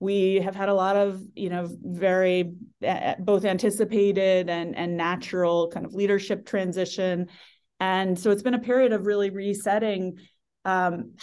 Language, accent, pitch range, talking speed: English, American, 165-200 Hz, 155 wpm